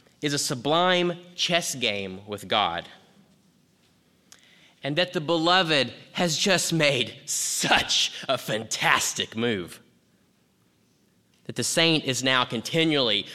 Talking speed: 110 wpm